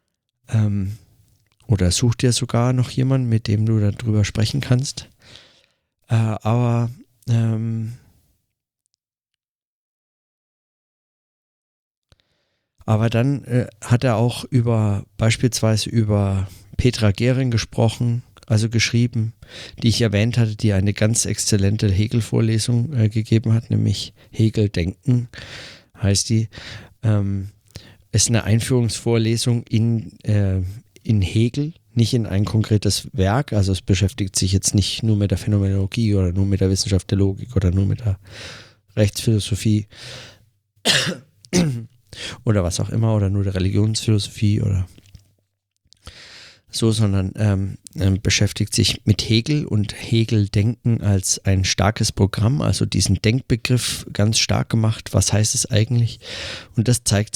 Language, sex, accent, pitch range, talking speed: German, male, German, 100-115 Hz, 120 wpm